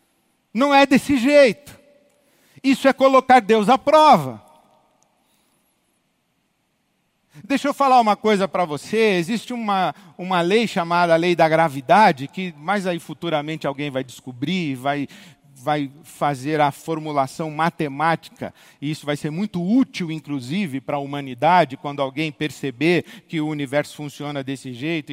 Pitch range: 150-220 Hz